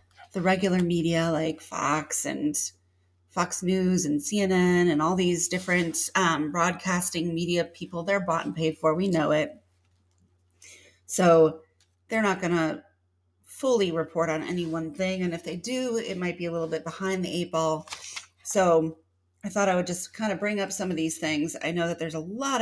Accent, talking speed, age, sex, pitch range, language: American, 190 wpm, 30-49, female, 150-190 Hz, English